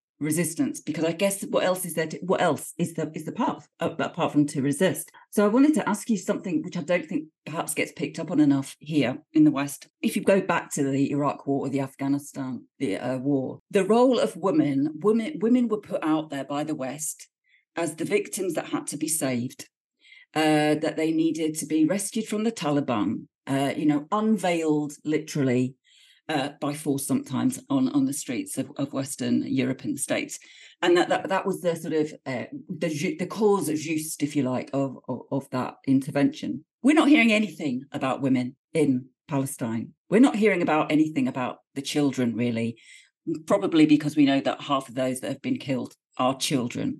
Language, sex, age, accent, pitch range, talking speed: English, female, 40-59, British, 140-205 Hz, 205 wpm